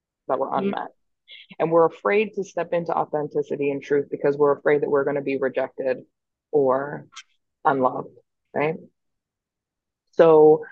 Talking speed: 140 wpm